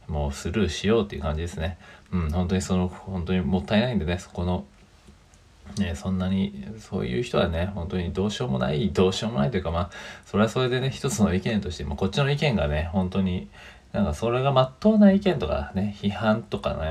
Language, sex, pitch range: Japanese, male, 80-100 Hz